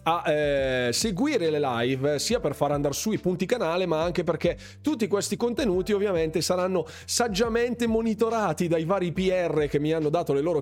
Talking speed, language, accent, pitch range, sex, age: 180 wpm, Italian, native, 140-185 Hz, male, 30-49